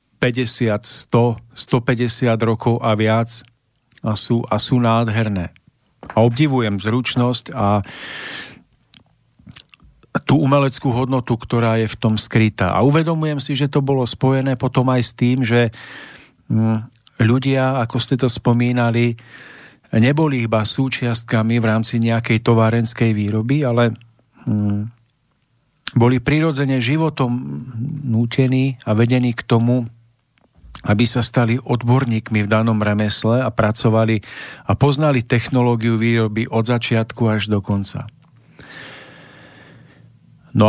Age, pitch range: 40-59, 110-130 Hz